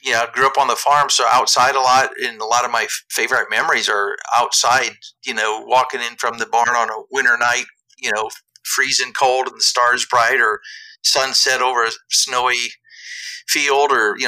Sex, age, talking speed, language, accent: male, 50-69, 195 wpm, English, American